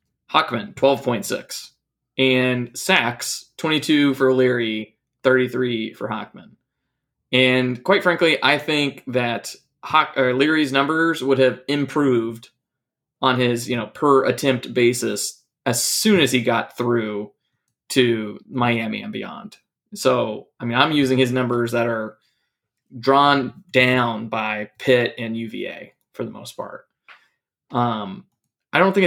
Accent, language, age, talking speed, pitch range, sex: American, English, 20-39, 125 wpm, 125-155 Hz, male